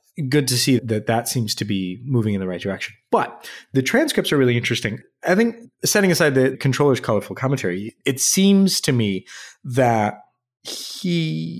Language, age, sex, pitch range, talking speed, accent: English, 30-49, male, 115-150 Hz, 170 wpm, American